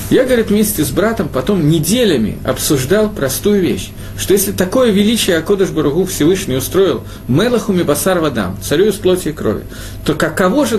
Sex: male